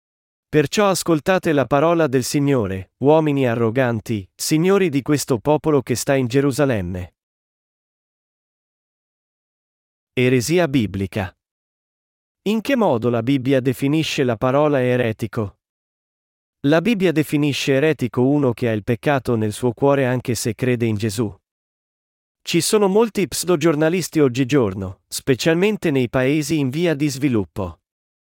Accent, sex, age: native, male, 40-59